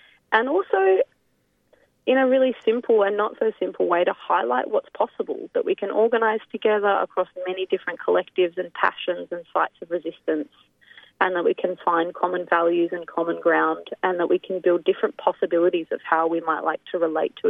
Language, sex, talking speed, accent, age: English, female, 190 wpm, Australian, 30-49